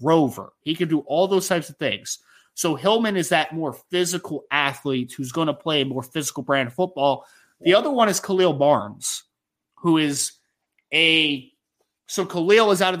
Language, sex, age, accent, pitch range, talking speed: English, male, 30-49, American, 140-180 Hz, 185 wpm